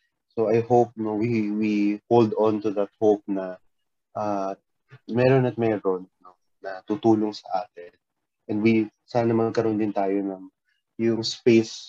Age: 20-39